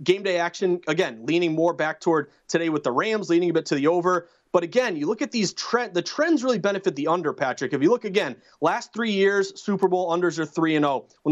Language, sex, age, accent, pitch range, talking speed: English, male, 30-49, American, 165-200 Hz, 250 wpm